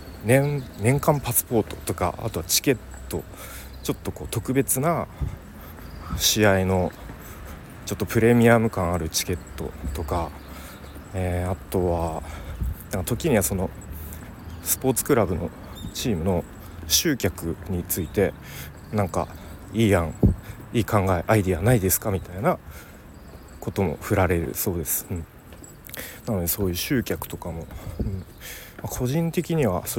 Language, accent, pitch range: Japanese, native, 85-110 Hz